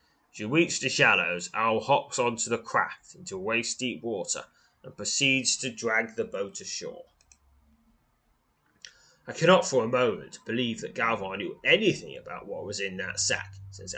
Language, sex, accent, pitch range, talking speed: English, male, British, 105-135 Hz, 155 wpm